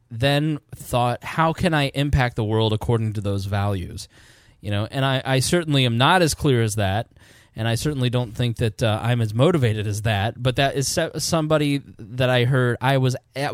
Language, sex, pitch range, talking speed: English, male, 115-150 Hz, 205 wpm